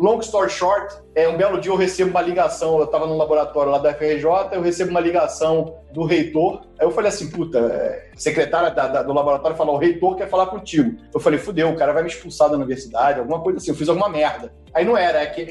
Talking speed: 240 wpm